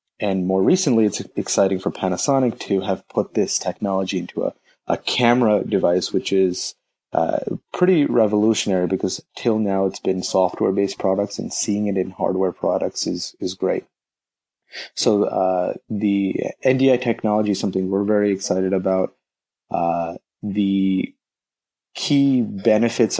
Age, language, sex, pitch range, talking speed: 30-49, English, male, 95-105 Hz, 135 wpm